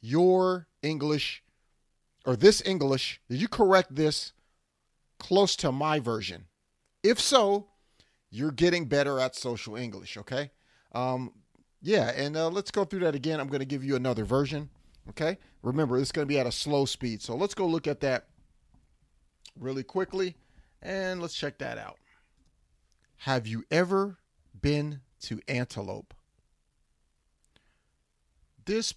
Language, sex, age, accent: English, male, 40-59, American